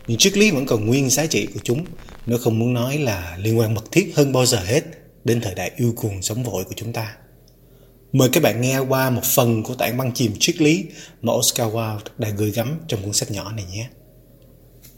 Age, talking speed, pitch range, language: 20-39, 230 wpm, 115-135 Hz, Vietnamese